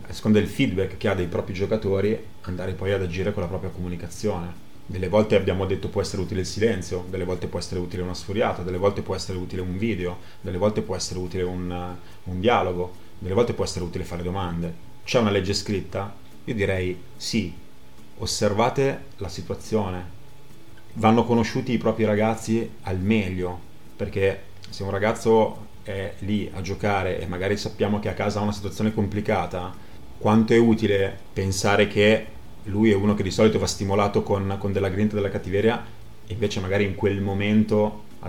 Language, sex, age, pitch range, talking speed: Italian, male, 30-49, 95-110 Hz, 185 wpm